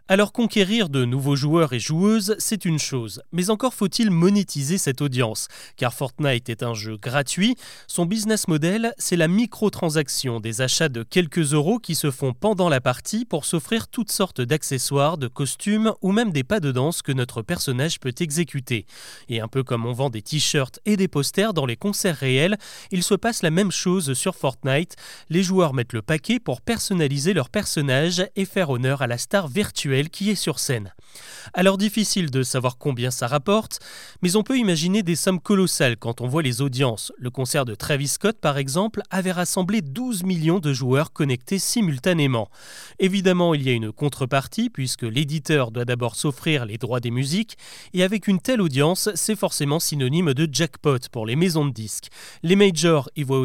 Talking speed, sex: 190 wpm, male